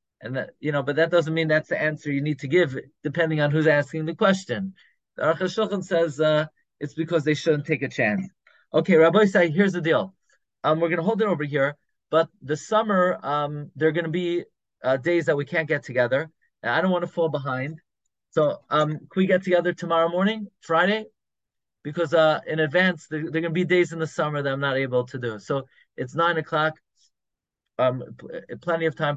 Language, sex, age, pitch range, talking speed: English, male, 30-49, 135-175 Hz, 220 wpm